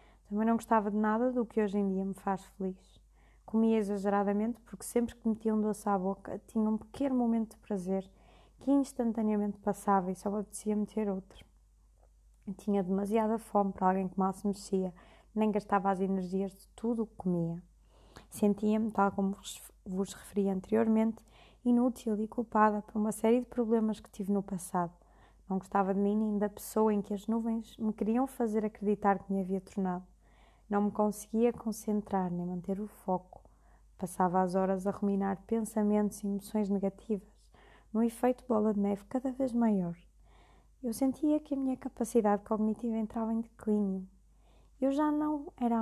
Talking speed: 170 wpm